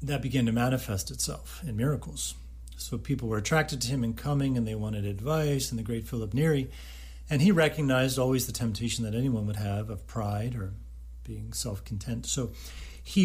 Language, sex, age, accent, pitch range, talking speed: English, male, 40-59, American, 95-120 Hz, 185 wpm